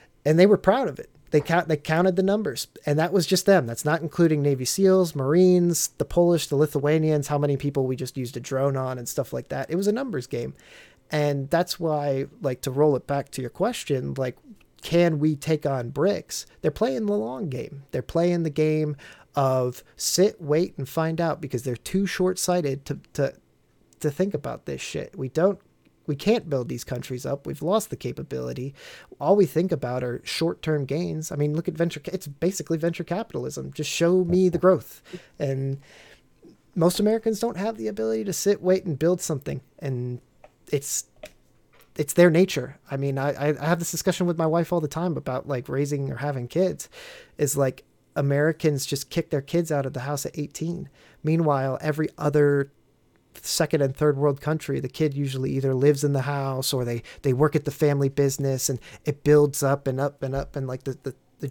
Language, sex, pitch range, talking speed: English, male, 135-170 Hz, 205 wpm